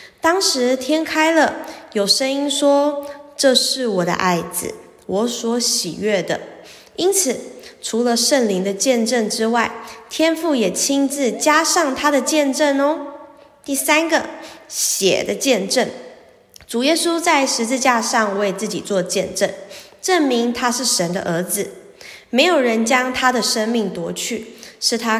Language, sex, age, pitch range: Chinese, female, 20-39, 210-290 Hz